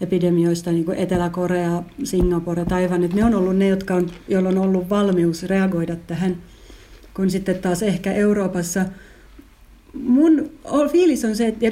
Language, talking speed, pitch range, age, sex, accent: Finnish, 140 wpm, 185-230 Hz, 40-59, female, native